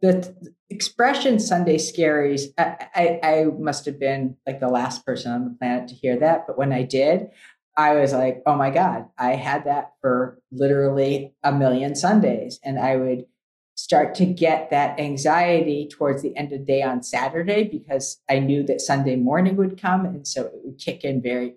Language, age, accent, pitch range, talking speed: English, 50-69, American, 135-160 Hz, 190 wpm